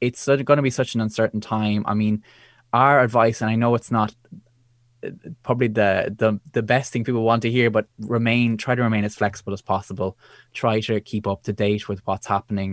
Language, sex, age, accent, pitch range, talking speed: English, male, 20-39, Irish, 100-115 Hz, 210 wpm